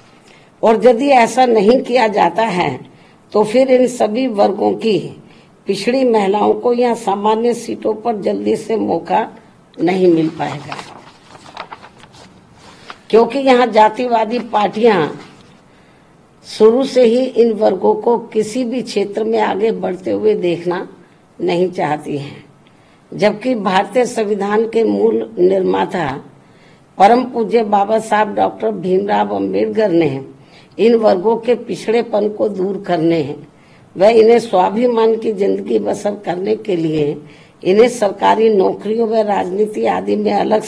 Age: 50-69